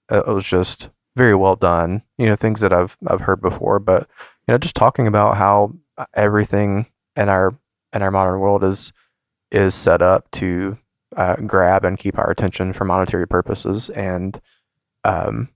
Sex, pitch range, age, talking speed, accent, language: male, 90-105 Hz, 20-39, 170 wpm, American, English